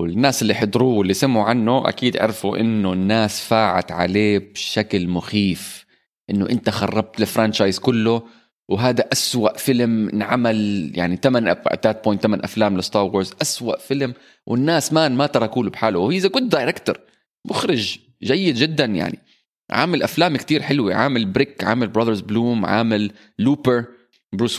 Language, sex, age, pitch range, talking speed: Arabic, male, 20-39, 105-135 Hz, 135 wpm